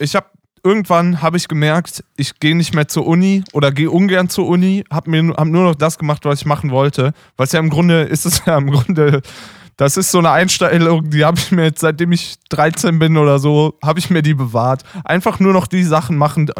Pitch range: 130-160 Hz